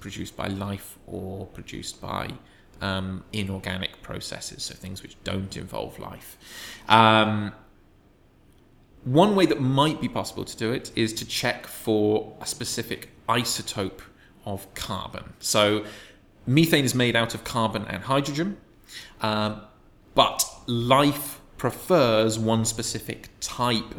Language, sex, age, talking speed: English, male, 20-39, 125 wpm